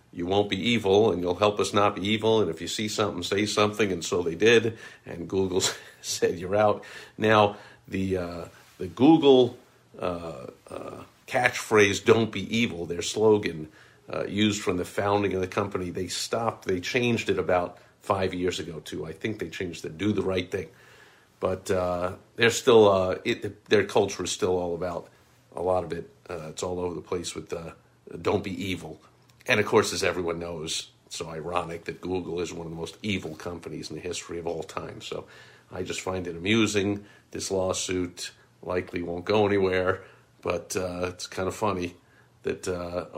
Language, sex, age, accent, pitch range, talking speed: English, male, 50-69, American, 90-105 Hz, 195 wpm